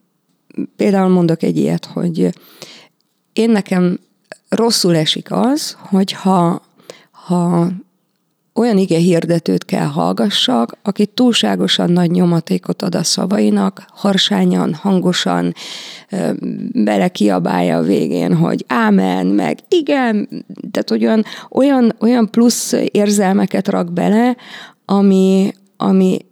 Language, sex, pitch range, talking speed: Hungarian, female, 170-215 Hz, 100 wpm